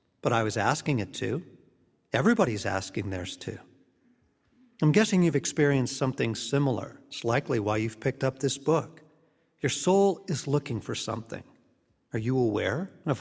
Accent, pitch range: American, 125-165 Hz